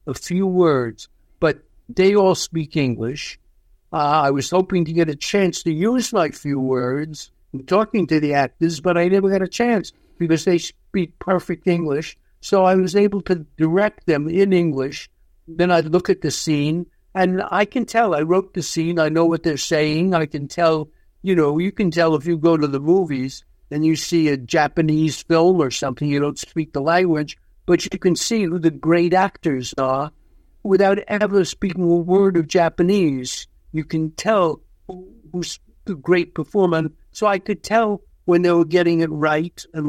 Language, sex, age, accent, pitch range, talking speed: French, male, 60-79, American, 150-185 Hz, 190 wpm